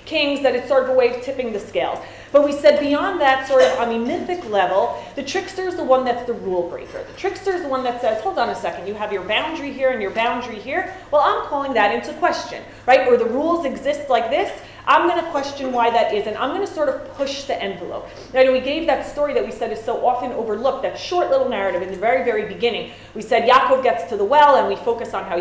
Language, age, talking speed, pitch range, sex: English, 30-49, 270 wpm, 215-285 Hz, female